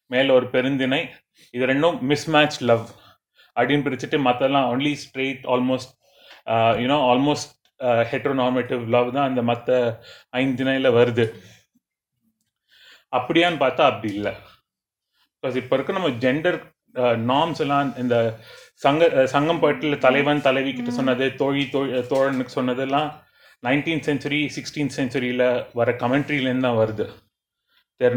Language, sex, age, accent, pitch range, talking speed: Tamil, male, 30-49, native, 115-140 Hz, 115 wpm